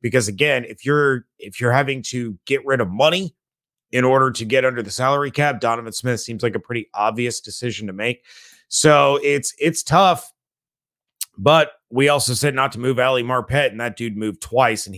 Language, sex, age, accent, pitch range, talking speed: English, male, 30-49, American, 115-140 Hz, 195 wpm